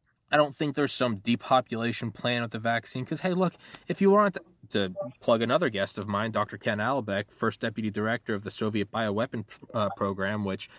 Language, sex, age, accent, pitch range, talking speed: English, male, 20-39, American, 95-115 Hz, 200 wpm